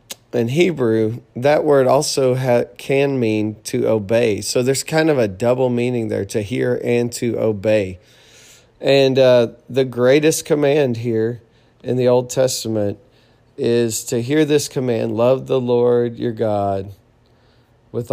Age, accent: 40-59, American